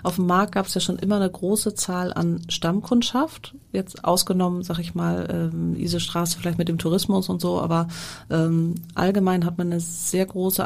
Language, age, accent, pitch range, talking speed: German, 30-49, German, 165-190 Hz, 195 wpm